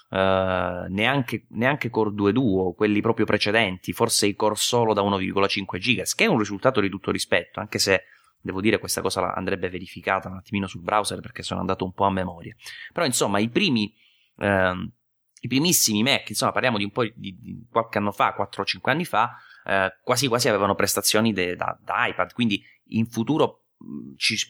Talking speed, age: 190 wpm, 20-39